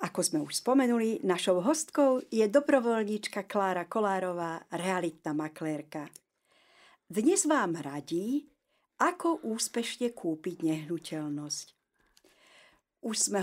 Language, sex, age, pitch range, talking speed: Slovak, female, 50-69, 175-255 Hz, 95 wpm